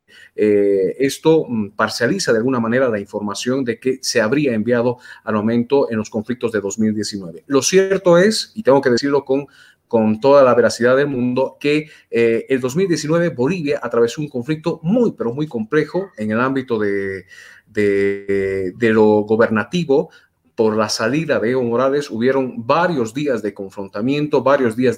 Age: 40-59